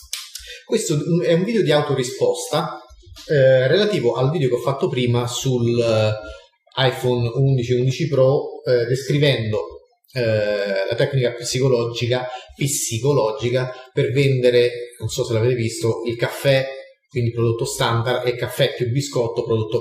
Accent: native